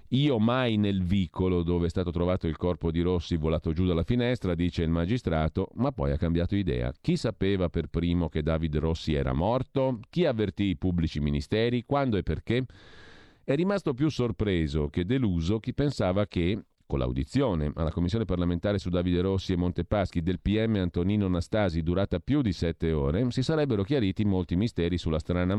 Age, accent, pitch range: 40-59, native, 80-105 Hz